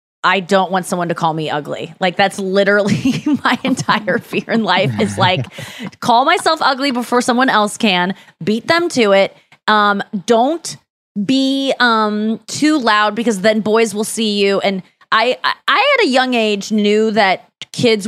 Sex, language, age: female, English, 20-39